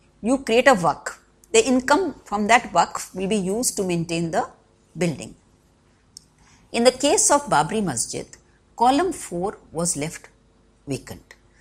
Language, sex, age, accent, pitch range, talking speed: English, female, 50-69, Indian, 170-240 Hz, 140 wpm